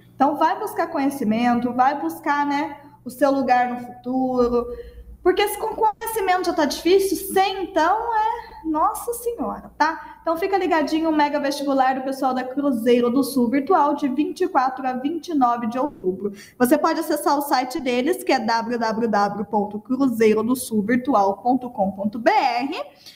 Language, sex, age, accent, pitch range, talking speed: Portuguese, female, 20-39, Brazilian, 240-300 Hz, 135 wpm